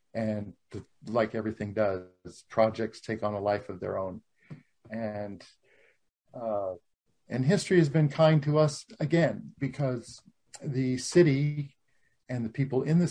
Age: 50-69